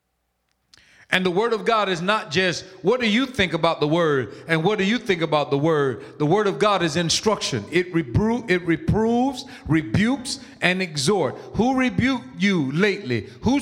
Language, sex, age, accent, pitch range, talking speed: English, male, 40-59, American, 170-220 Hz, 175 wpm